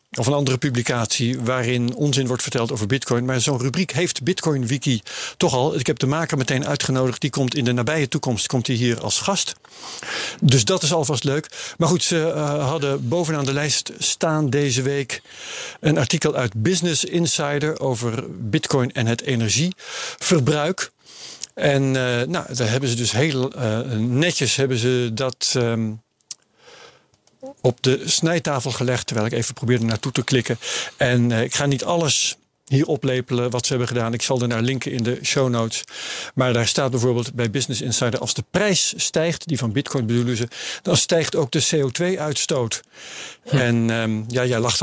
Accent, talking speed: Dutch, 180 wpm